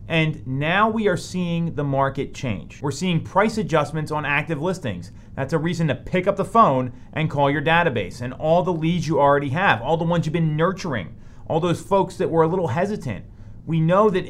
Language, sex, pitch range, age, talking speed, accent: English, male, 125-180 Hz, 30-49, 215 wpm, American